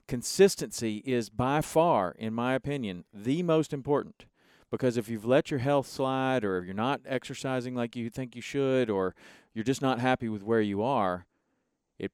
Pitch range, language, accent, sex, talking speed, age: 110-150 Hz, English, American, male, 185 wpm, 40-59